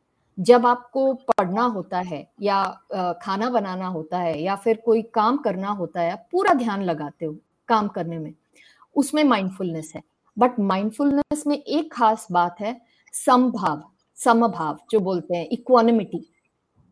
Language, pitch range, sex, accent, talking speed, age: Hindi, 190-260 Hz, female, native, 140 wpm, 50-69